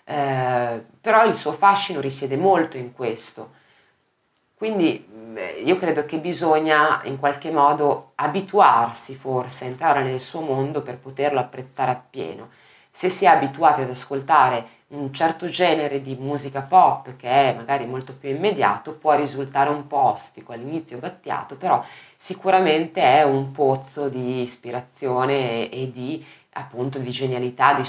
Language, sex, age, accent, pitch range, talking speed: Italian, female, 20-39, native, 125-150 Hz, 145 wpm